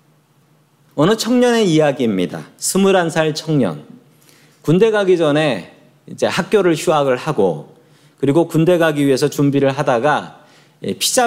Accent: native